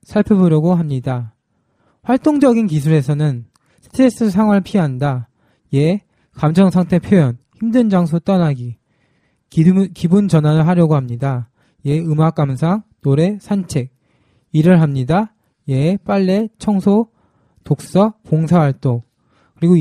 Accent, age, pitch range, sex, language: native, 20-39, 140-200 Hz, male, Korean